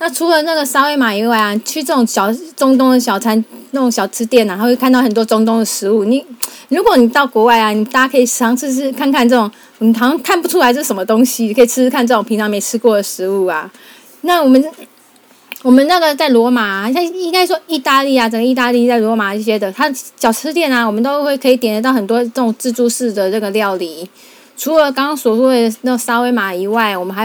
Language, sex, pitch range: Chinese, female, 225-275 Hz